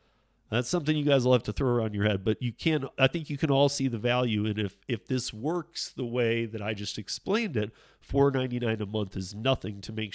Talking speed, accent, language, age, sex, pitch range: 240 wpm, American, English, 40-59, male, 110-140 Hz